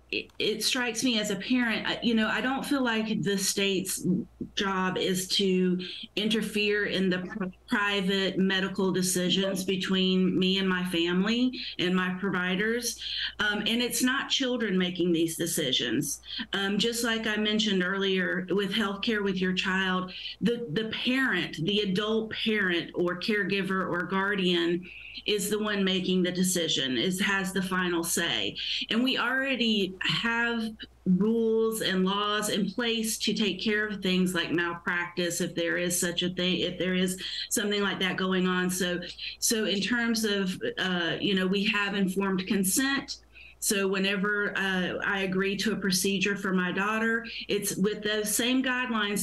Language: English